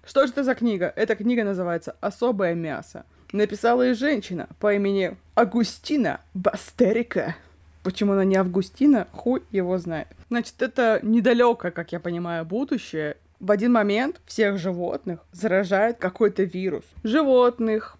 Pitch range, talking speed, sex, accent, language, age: 185-245 Hz, 135 wpm, female, native, Russian, 20-39